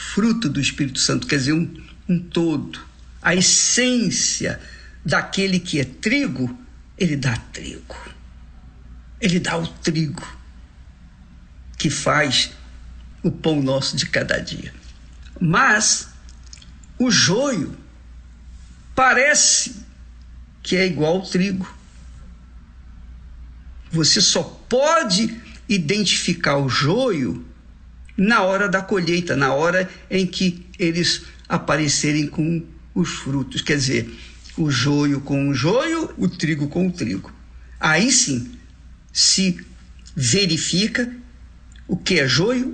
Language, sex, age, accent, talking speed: Portuguese, male, 60-79, Brazilian, 110 wpm